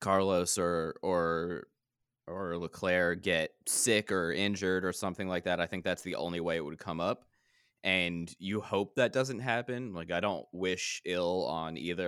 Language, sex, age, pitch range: English, male, 20-39, 85-100 Hz